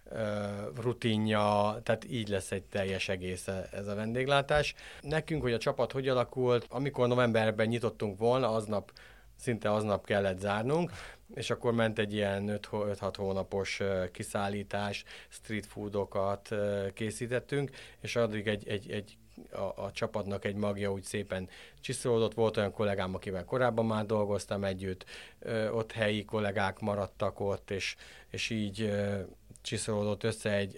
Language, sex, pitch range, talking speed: Hungarian, male, 100-115 Hz, 135 wpm